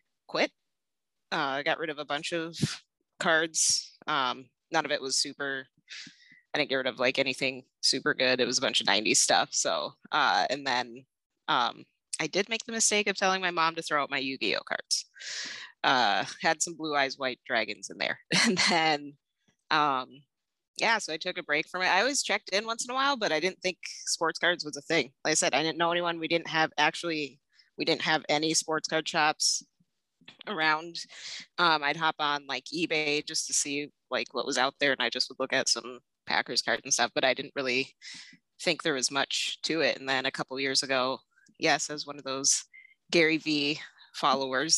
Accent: American